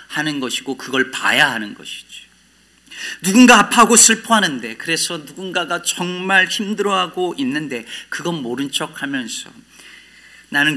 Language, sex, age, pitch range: Korean, male, 40-59, 120-150 Hz